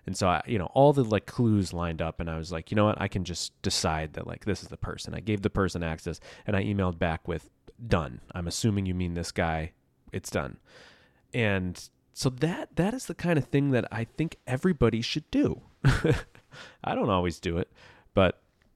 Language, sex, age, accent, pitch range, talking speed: English, male, 30-49, American, 85-125 Hz, 220 wpm